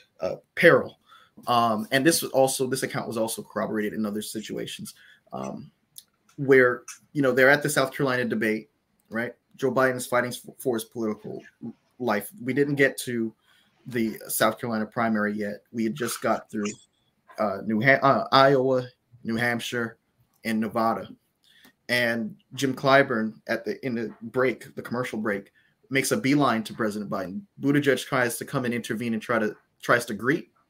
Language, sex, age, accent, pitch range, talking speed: English, male, 20-39, American, 110-135 Hz, 170 wpm